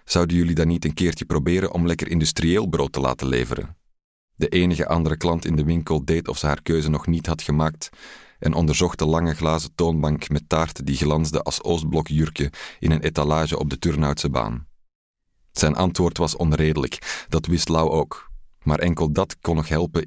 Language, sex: Dutch, male